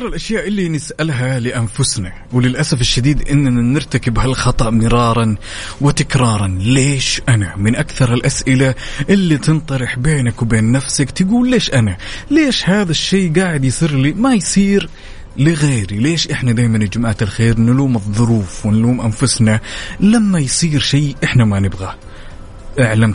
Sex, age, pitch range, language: male, 30-49, 105-135 Hz, Arabic